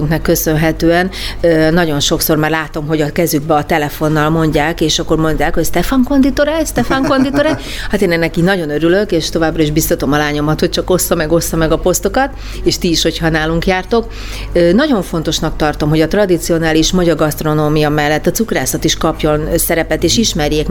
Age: 40-59